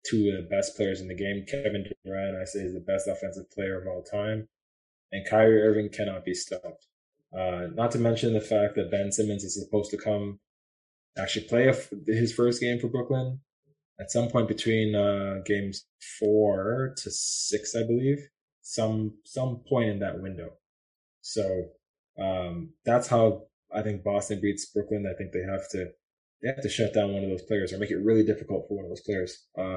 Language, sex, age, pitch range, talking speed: English, male, 20-39, 100-120 Hz, 200 wpm